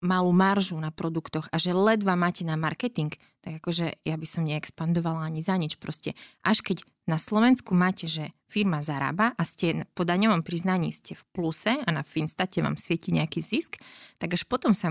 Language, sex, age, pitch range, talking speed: Slovak, female, 20-39, 160-185 Hz, 190 wpm